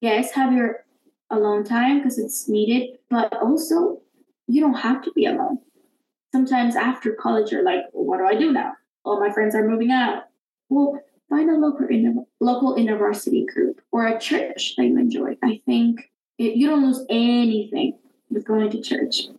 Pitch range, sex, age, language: 220-270 Hz, female, 20-39, English